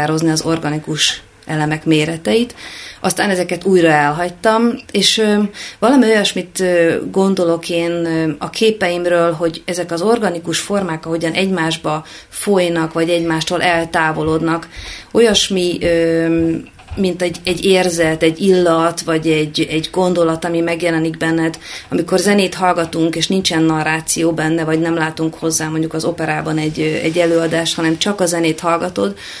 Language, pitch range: Hungarian, 160-190 Hz